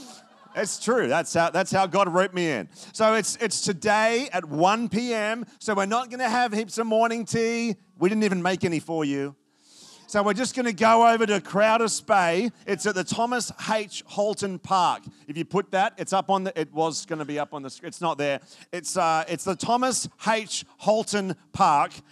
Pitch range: 160-215 Hz